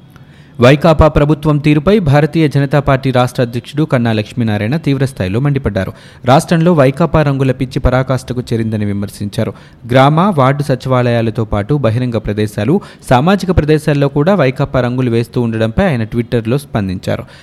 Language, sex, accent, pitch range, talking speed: Telugu, male, native, 115-150 Hz, 120 wpm